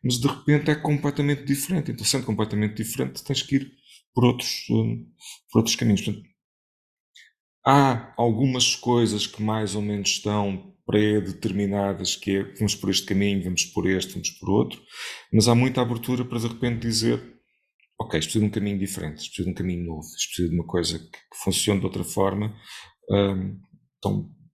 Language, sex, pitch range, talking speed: Portuguese, male, 95-115 Hz, 185 wpm